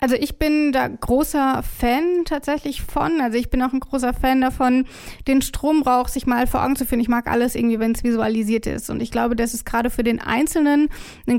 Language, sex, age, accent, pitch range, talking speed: German, female, 20-39, German, 225-265 Hz, 225 wpm